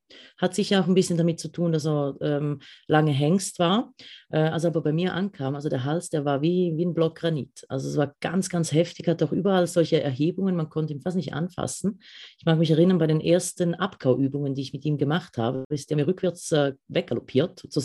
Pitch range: 150-185 Hz